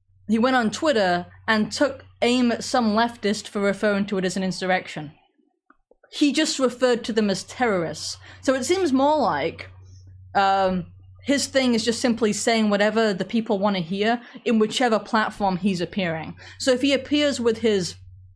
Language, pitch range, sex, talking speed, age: English, 190-245 Hz, female, 175 wpm, 20-39